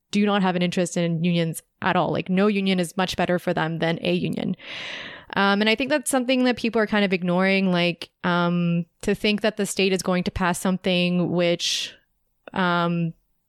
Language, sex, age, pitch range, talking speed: English, female, 20-39, 180-205 Hz, 205 wpm